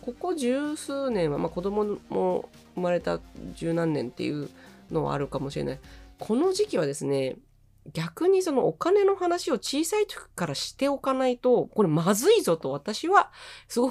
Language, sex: Japanese, female